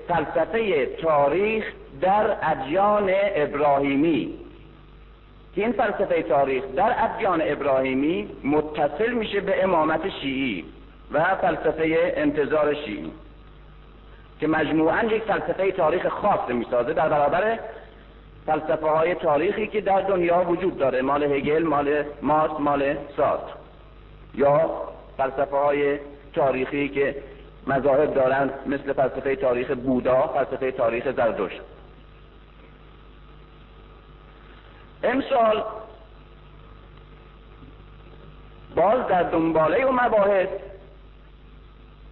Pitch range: 145-205 Hz